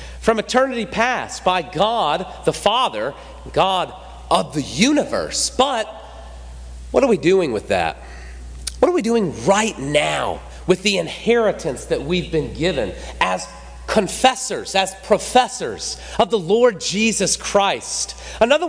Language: English